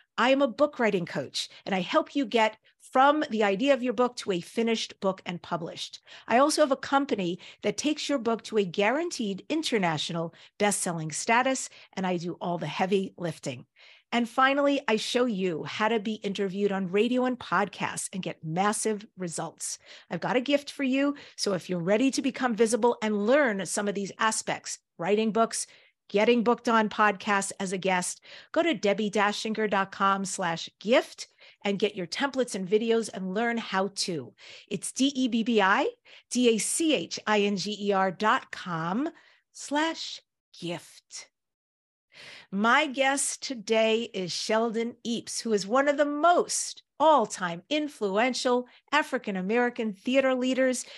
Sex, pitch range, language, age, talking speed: female, 195-260 Hz, English, 50-69, 150 wpm